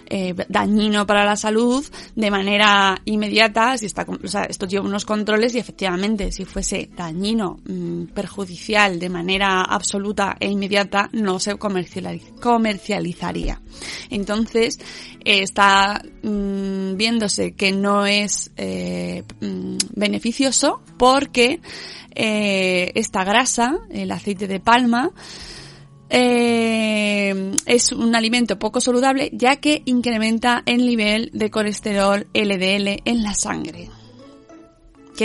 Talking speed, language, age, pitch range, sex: 110 wpm, Spanish, 20-39, 195-230 Hz, female